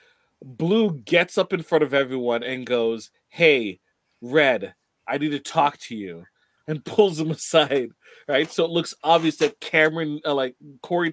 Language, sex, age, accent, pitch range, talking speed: English, male, 30-49, American, 115-145 Hz, 165 wpm